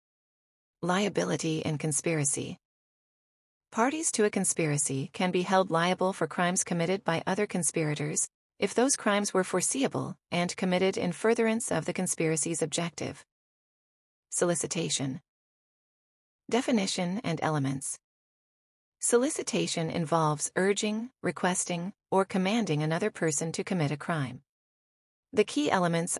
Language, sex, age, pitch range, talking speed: English, female, 30-49, 155-200 Hz, 110 wpm